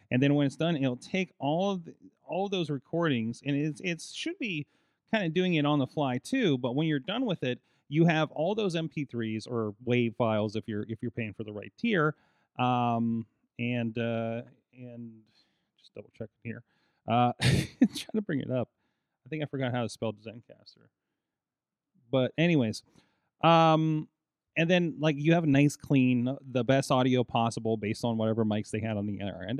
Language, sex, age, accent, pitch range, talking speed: English, male, 30-49, American, 115-150 Hz, 195 wpm